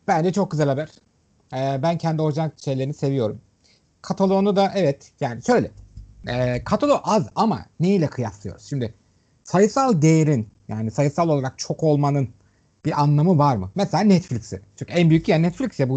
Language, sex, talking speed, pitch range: Turkish, male, 160 wpm, 120-190 Hz